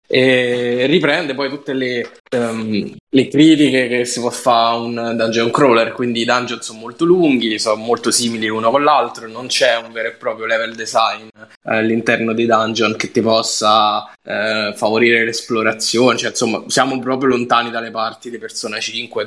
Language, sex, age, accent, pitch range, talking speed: Italian, male, 10-29, native, 110-130 Hz, 175 wpm